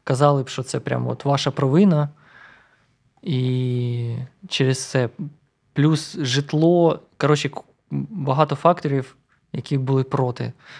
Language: Ukrainian